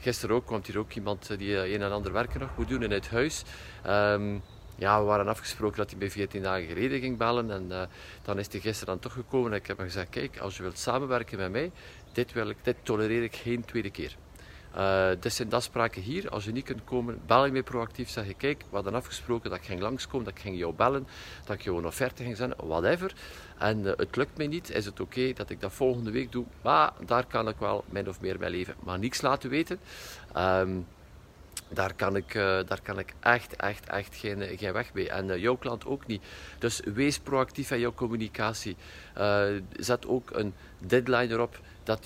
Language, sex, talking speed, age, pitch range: Dutch, male, 235 wpm, 50-69, 100-125 Hz